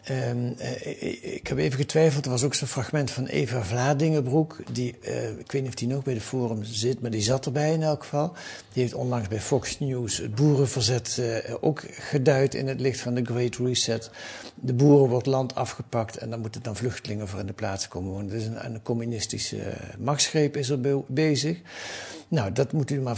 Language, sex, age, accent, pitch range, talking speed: Dutch, male, 60-79, Dutch, 110-145 Hz, 215 wpm